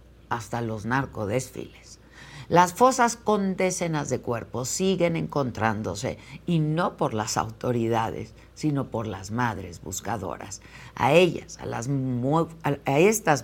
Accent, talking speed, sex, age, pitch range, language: Mexican, 125 wpm, female, 50-69, 120-175 Hz, Spanish